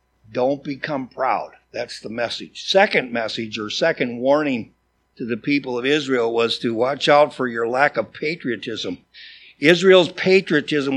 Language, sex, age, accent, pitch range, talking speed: English, male, 60-79, American, 115-160 Hz, 150 wpm